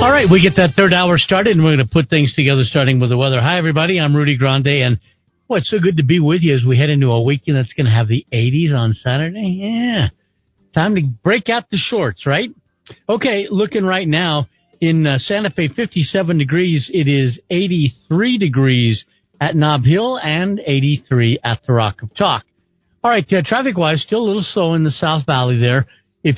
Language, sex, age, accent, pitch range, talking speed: English, male, 50-69, American, 135-180 Hz, 210 wpm